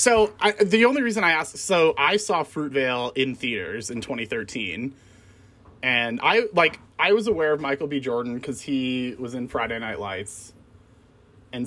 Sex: male